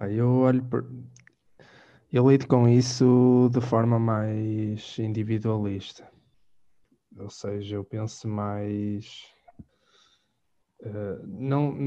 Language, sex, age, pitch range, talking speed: Portuguese, male, 20-39, 105-125 Hz, 80 wpm